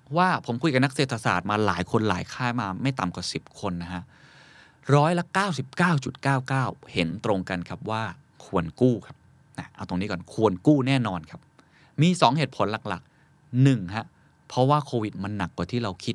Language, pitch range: Thai, 100-145 Hz